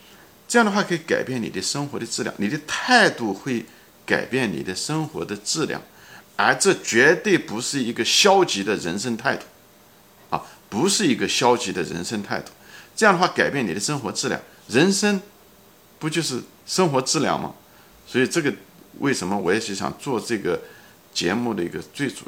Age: 50-69